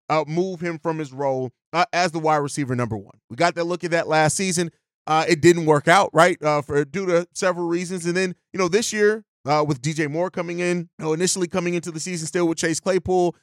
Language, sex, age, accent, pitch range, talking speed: English, male, 30-49, American, 155-185 Hz, 250 wpm